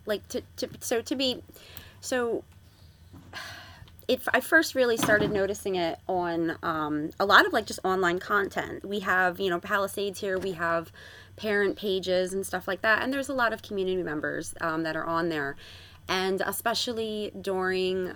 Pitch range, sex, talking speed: 165-205 Hz, female, 170 wpm